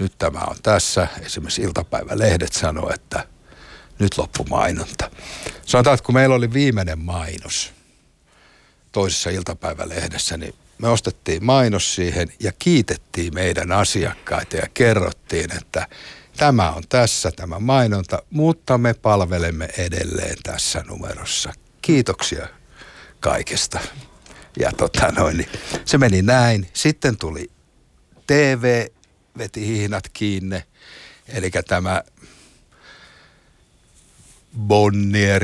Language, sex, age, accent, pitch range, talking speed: Finnish, male, 60-79, native, 90-110 Hz, 105 wpm